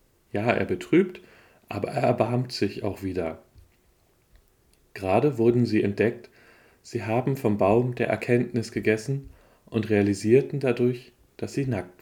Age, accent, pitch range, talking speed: 40-59, German, 105-125 Hz, 130 wpm